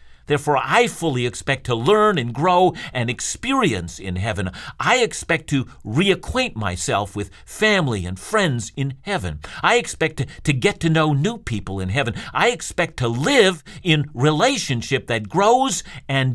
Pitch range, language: 110-170 Hz, English